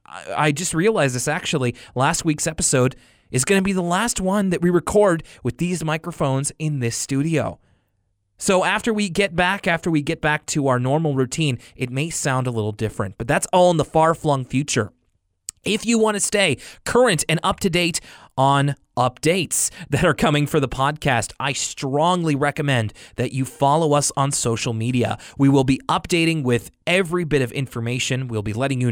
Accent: American